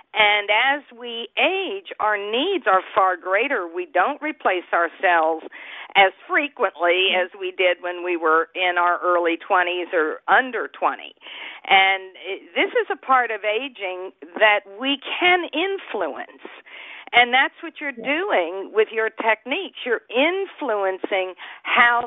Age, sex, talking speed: 50-69, female, 135 wpm